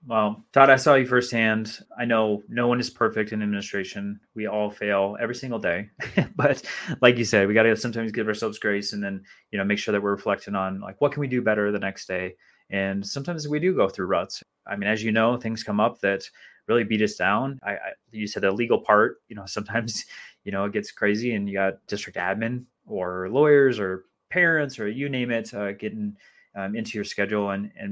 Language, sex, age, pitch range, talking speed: English, male, 20-39, 100-120 Hz, 230 wpm